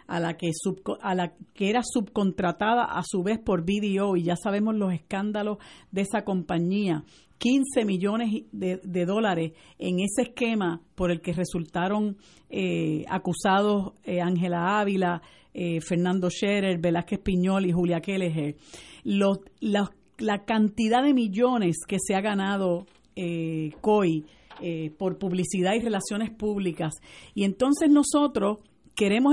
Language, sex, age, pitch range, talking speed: Spanish, female, 50-69, 180-230 Hz, 140 wpm